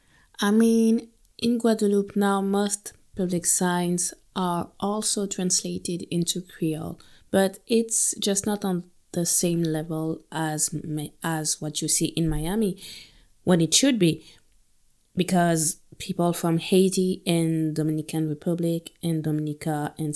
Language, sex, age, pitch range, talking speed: English, female, 20-39, 150-185 Hz, 125 wpm